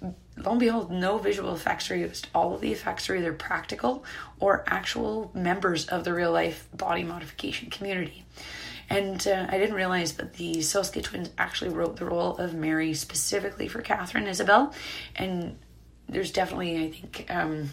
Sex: female